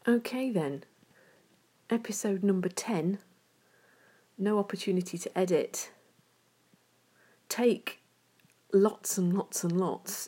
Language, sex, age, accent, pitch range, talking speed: English, female, 40-59, British, 175-215 Hz, 90 wpm